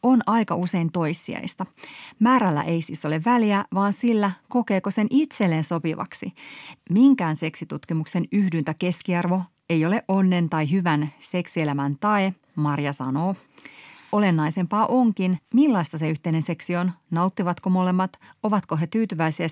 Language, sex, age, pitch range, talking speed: Finnish, female, 30-49, 160-210 Hz, 120 wpm